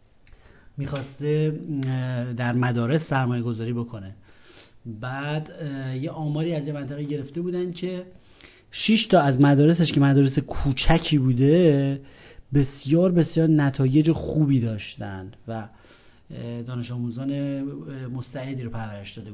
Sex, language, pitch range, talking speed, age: male, Persian, 130-170 Hz, 105 wpm, 30-49